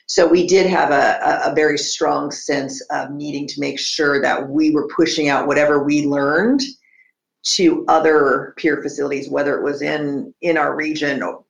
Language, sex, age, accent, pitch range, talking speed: English, female, 50-69, American, 145-220 Hz, 170 wpm